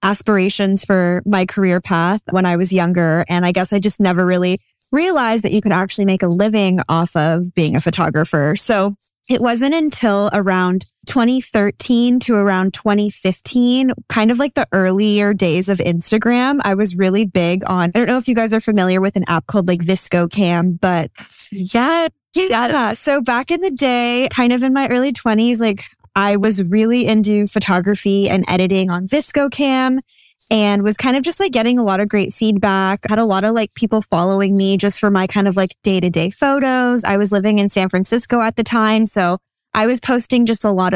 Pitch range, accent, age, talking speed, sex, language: 190-235 Hz, American, 10-29, 200 wpm, female, English